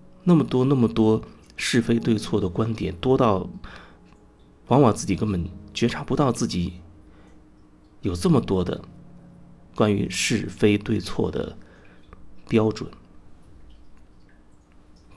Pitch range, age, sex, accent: 85-105 Hz, 30-49, male, native